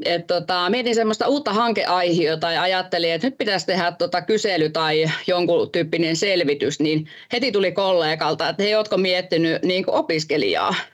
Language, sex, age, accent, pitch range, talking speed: Finnish, female, 20-39, native, 170-215 Hz, 155 wpm